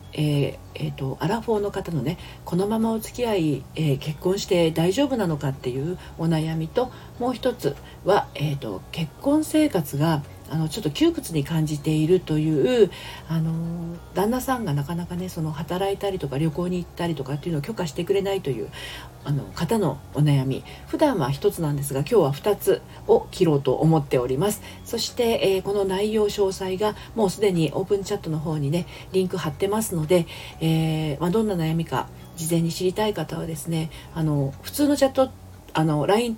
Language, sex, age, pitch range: Japanese, female, 40-59, 150-195 Hz